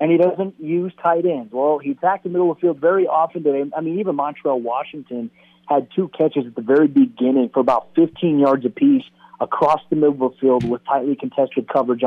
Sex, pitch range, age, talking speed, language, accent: male, 130-170 Hz, 30-49, 220 wpm, English, American